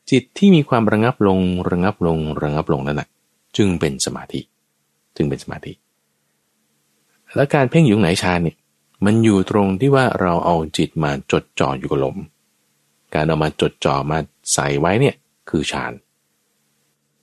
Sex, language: male, Thai